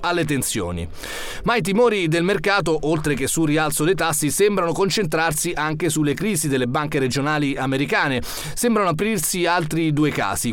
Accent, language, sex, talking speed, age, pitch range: native, Italian, male, 155 wpm, 30-49, 135-165 Hz